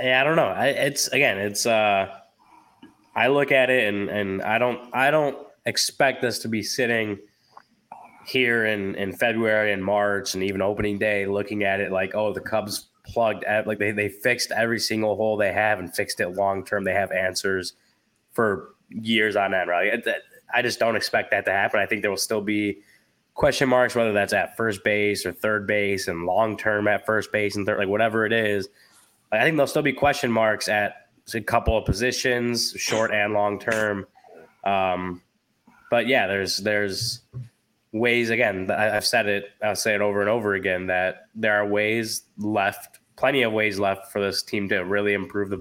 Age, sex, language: 20-39, male, English